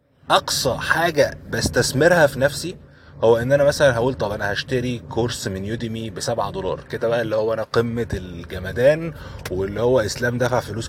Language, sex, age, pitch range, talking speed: Arabic, male, 20-39, 115-145 Hz, 165 wpm